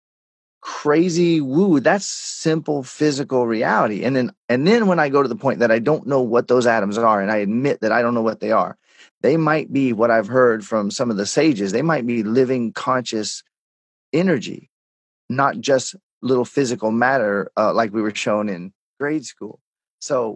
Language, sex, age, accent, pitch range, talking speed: English, male, 30-49, American, 115-145 Hz, 190 wpm